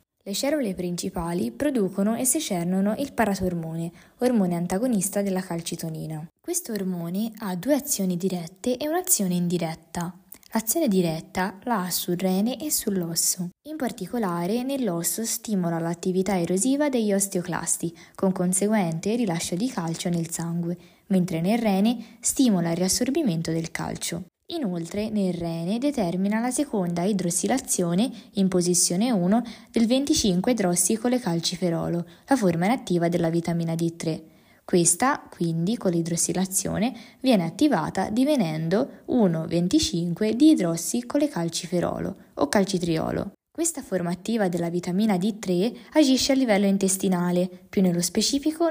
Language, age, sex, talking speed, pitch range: Italian, 20-39, female, 120 wpm, 175-230 Hz